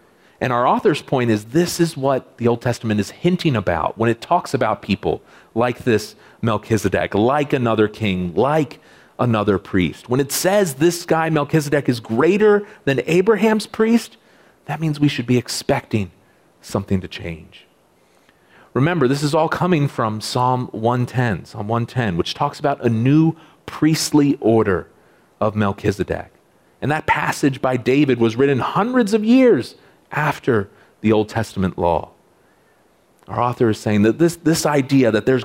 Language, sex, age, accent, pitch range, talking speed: English, male, 40-59, American, 110-150 Hz, 155 wpm